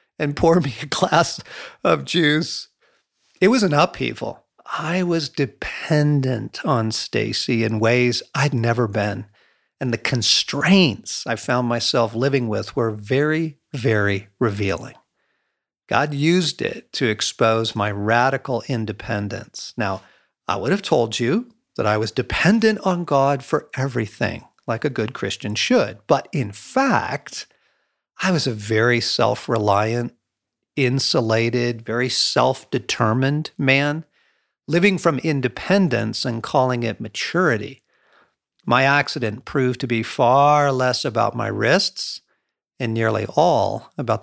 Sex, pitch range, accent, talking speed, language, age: male, 115-150 Hz, American, 125 wpm, English, 50-69